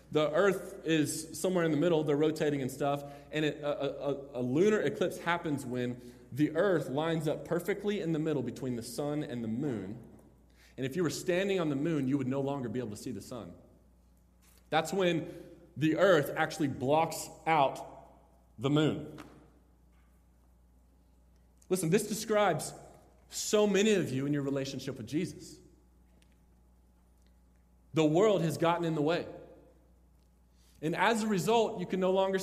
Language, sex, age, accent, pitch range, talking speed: English, male, 30-49, American, 130-210 Hz, 160 wpm